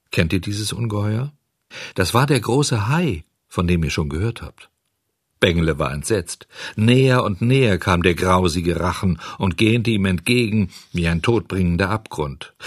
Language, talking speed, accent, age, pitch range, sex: German, 155 wpm, German, 50-69, 95-135 Hz, male